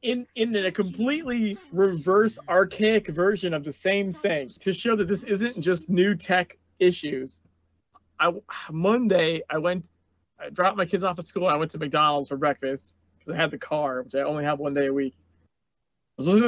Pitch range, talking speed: 150-210 Hz, 200 wpm